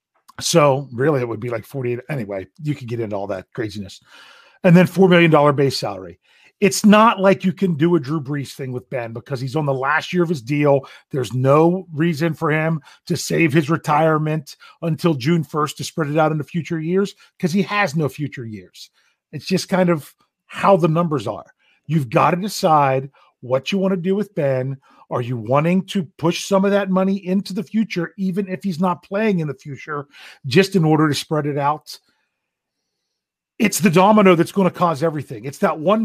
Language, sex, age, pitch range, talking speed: English, male, 40-59, 140-185 Hz, 210 wpm